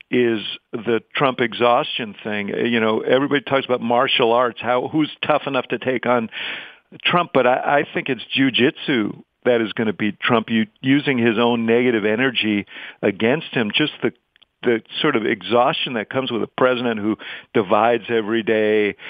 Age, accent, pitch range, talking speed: 50-69, American, 110-130 Hz, 175 wpm